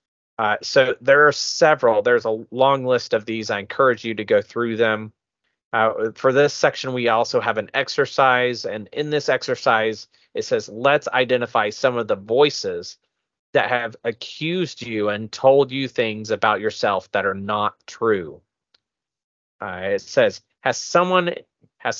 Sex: male